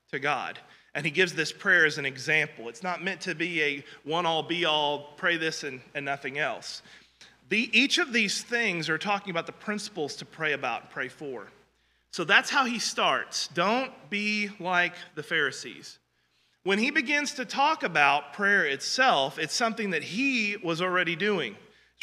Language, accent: English, American